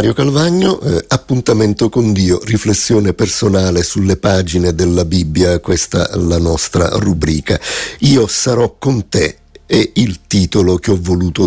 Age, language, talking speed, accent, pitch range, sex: 50-69, Italian, 135 wpm, native, 90-110 Hz, male